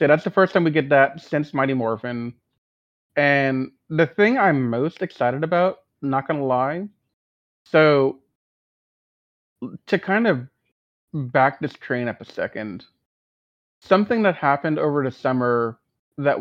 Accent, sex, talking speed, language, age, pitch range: American, male, 145 wpm, English, 30-49, 120-145 Hz